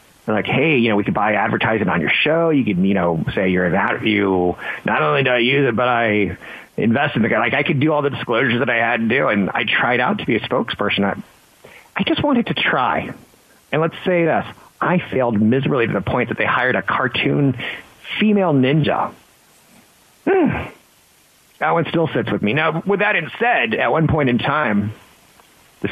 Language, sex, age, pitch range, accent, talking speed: English, male, 40-59, 105-165 Hz, American, 215 wpm